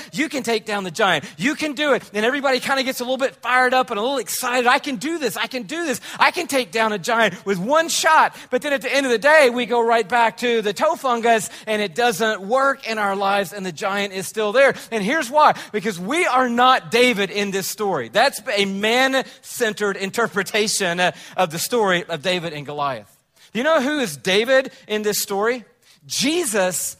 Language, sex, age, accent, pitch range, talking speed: English, male, 40-59, American, 195-255 Hz, 225 wpm